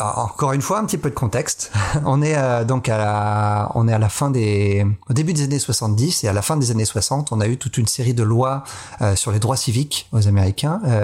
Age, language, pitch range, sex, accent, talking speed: 40-59, French, 110-145 Hz, male, French, 245 wpm